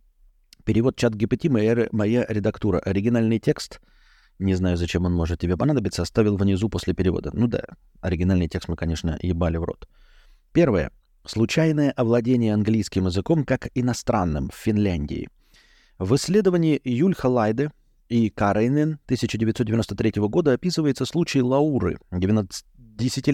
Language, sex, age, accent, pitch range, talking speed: Russian, male, 30-49, native, 100-135 Hz, 125 wpm